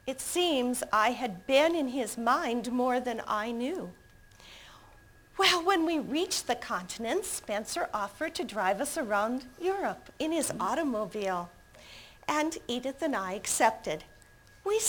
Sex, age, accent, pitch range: female, 50-69, American, 220-320 Hz